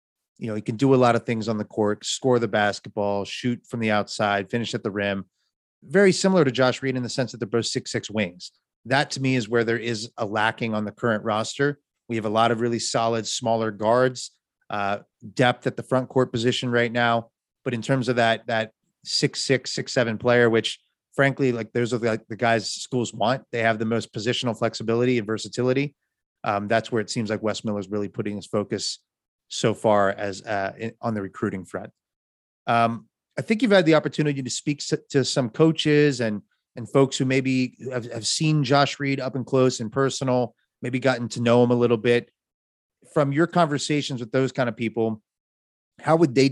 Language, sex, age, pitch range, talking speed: English, male, 30-49, 110-130 Hz, 215 wpm